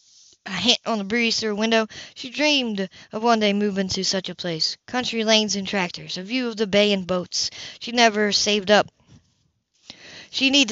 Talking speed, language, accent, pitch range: 195 wpm, English, American, 180-225 Hz